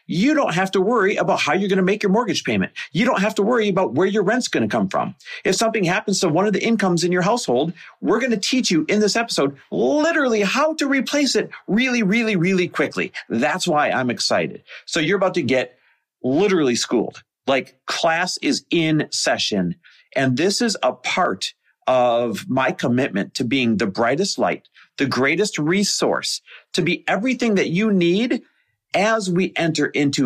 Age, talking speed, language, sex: 40-59, 190 wpm, English, male